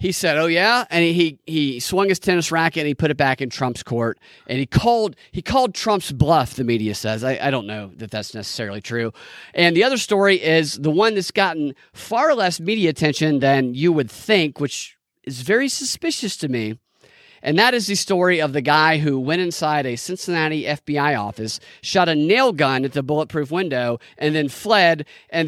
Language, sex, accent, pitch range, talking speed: English, male, American, 135-185 Hz, 205 wpm